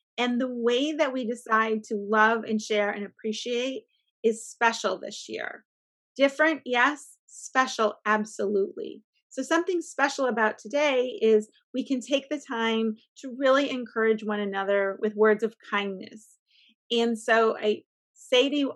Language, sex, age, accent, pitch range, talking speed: English, female, 30-49, American, 215-270 Hz, 145 wpm